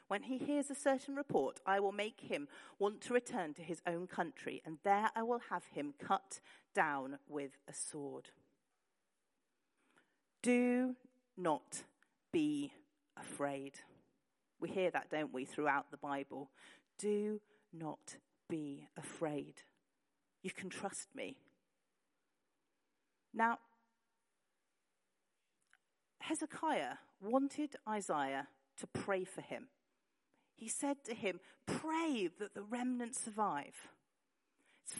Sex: female